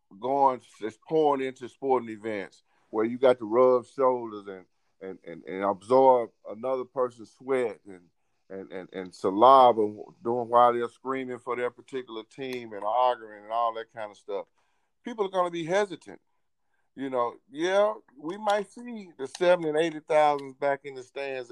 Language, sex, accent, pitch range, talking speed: English, male, American, 110-135 Hz, 175 wpm